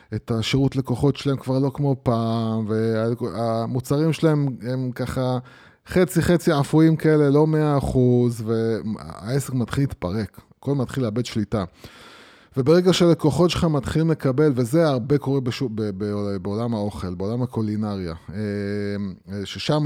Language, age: Hebrew, 20-39